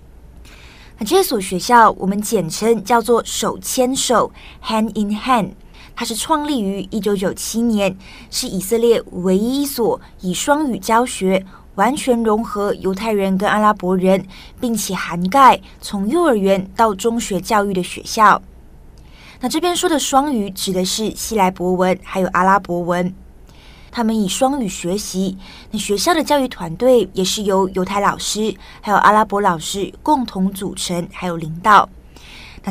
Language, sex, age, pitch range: Chinese, female, 20-39, 185-225 Hz